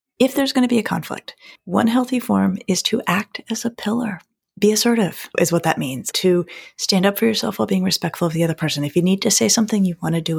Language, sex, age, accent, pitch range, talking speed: English, female, 30-49, American, 175-235 Hz, 255 wpm